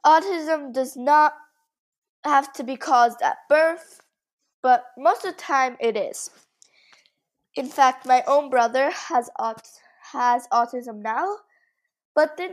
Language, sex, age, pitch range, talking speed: English, female, 20-39, 225-300 Hz, 135 wpm